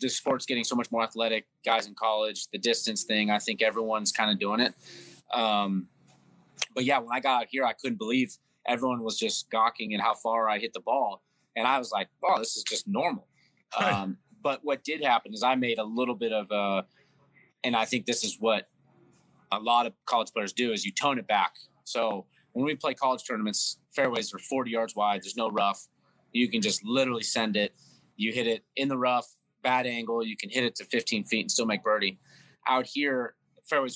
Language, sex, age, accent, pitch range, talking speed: English, male, 30-49, American, 110-130 Hz, 215 wpm